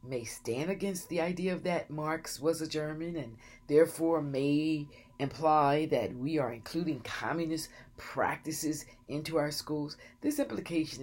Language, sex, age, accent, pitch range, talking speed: English, female, 40-59, American, 125-155 Hz, 135 wpm